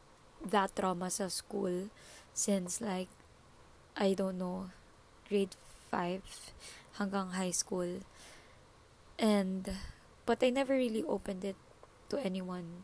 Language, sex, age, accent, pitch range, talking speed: Filipino, female, 20-39, native, 190-230 Hz, 105 wpm